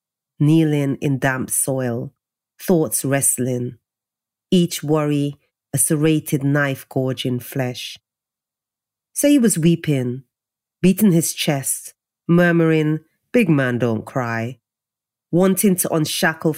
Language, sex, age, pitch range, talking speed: English, female, 40-59, 130-165 Hz, 100 wpm